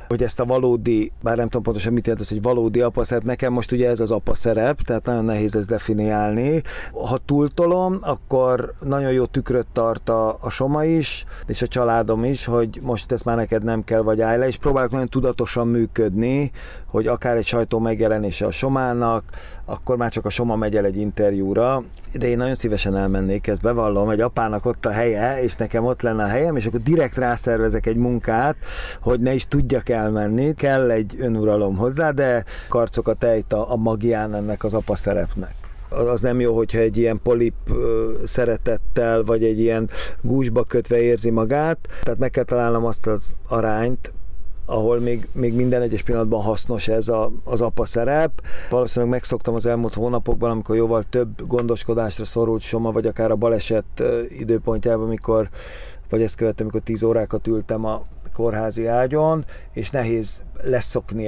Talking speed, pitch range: 175 wpm, 110-125 Hz